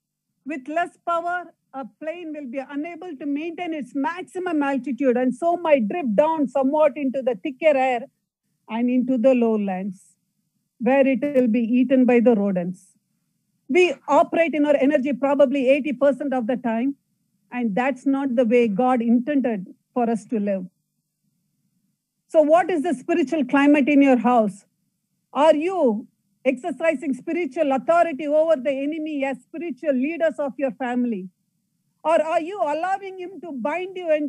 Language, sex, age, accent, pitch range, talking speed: English, female, 50-69, Indian, 230-325 Hz, 155 wpm